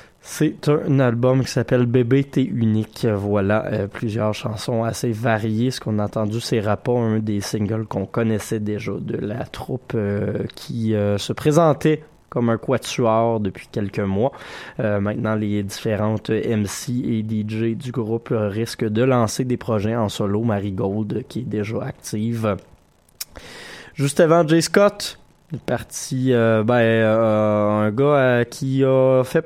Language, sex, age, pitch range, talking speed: French, male, 20-39, 110-130 Hz, 155 wpm